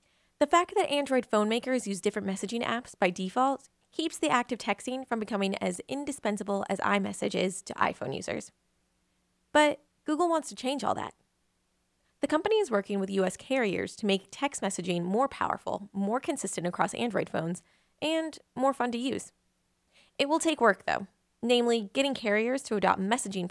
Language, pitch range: English, 190-265 Hz